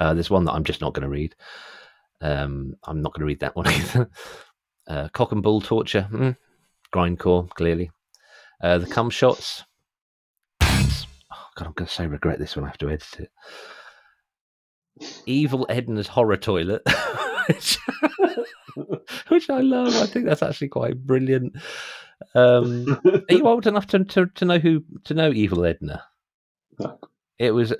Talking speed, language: 165 wpm, English